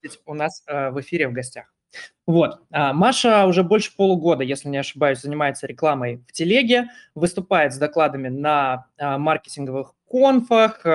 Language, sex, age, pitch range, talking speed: Russian, male, 20-39, 145-195 Hz, 130 wpm